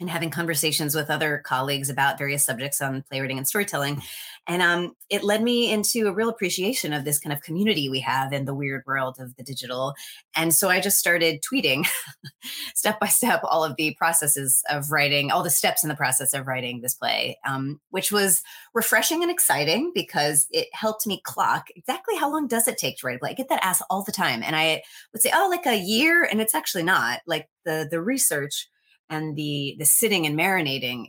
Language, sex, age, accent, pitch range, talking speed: English, female, 30-49, American, 135-190 Hz, 210 wpm